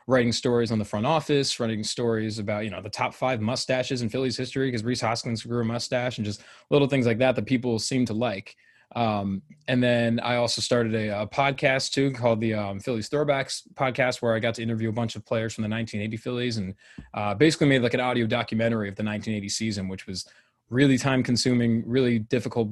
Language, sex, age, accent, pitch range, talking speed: English, male, 20-39, American, 105-125 Hz, 220 wpm